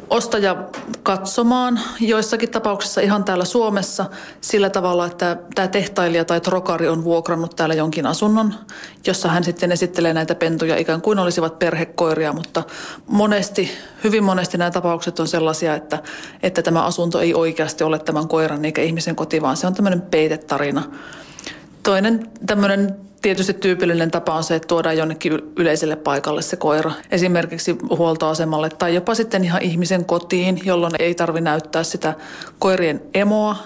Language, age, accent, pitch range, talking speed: Finnish, 30-49, native, 165-195 Hz, 150 wpm